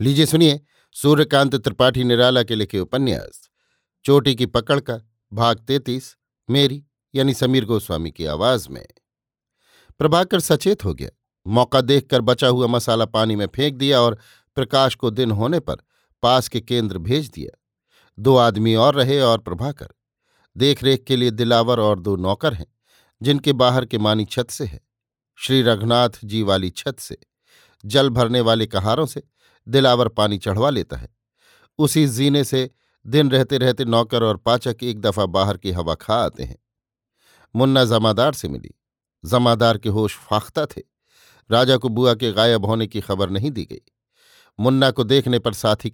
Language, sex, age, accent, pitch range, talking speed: Hindi, male, 50-69, native, 110-135 Hz, 165 wpm